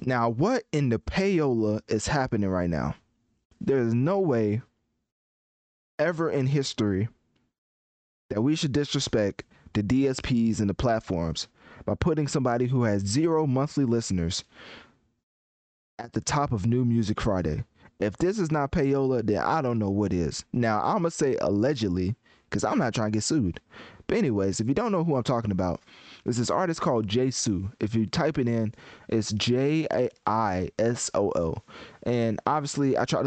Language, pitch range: English, 105-135 Hz